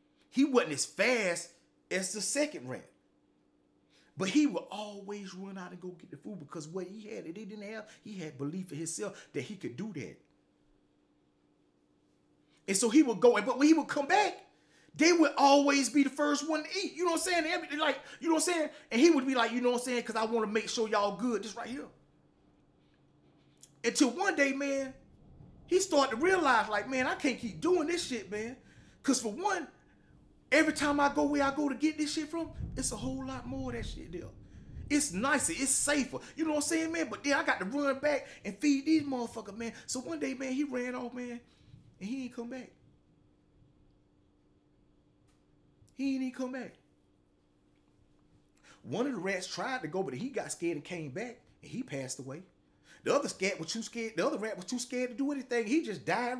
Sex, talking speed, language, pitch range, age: male, 220 wpm, English, 185-290 Hz, 30-49